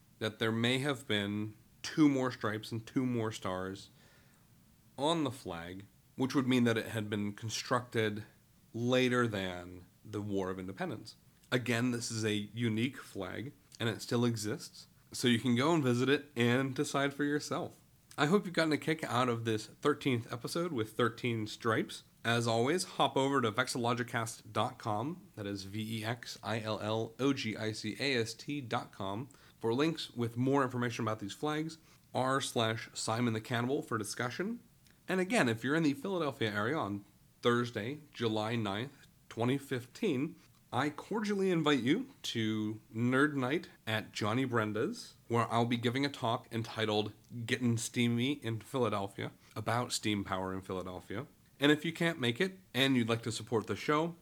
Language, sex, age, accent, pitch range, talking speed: English, male, 30-49, American, 110-140 Hz, 155 wpm